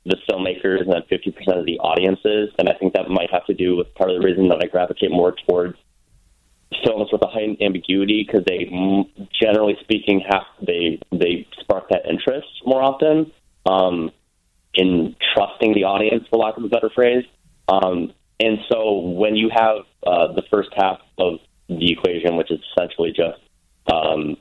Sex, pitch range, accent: male, 85-100 Hz, American